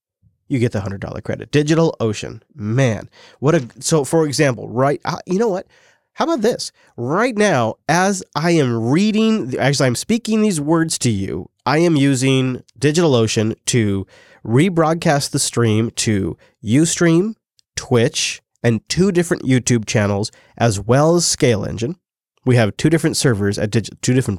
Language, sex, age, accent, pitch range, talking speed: English, male, 30-49, American, 110-155 Hz, 160 wpm